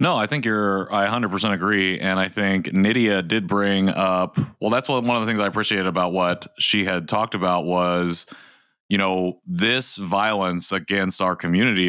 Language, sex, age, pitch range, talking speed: English, male, 30-49, 90-110 Hz, 195 wpm